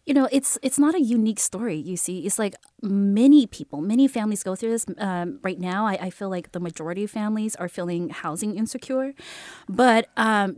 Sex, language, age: female, English, 20-39